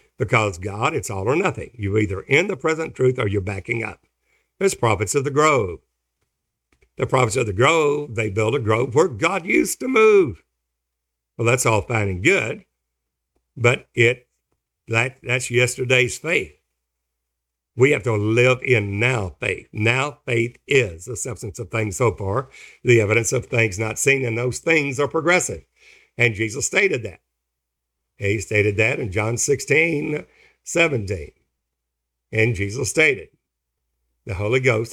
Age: 60-79